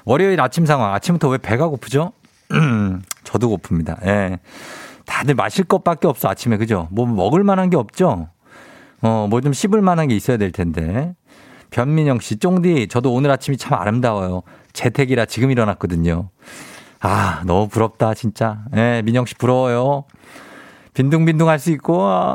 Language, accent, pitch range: Korean, native, 100-145 Hz